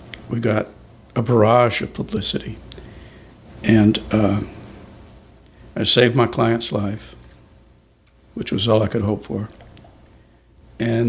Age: 60-79